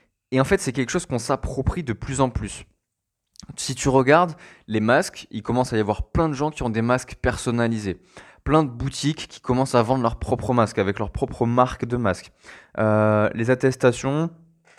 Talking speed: 200 wpm